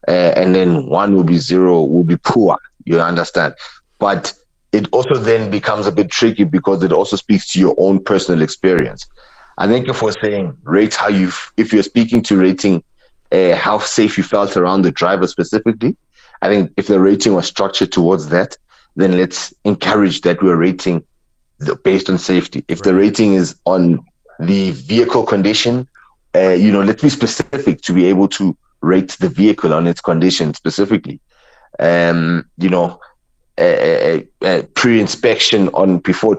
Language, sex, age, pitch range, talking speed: English, male, 30-49, 90-110 Hz, 170 wpm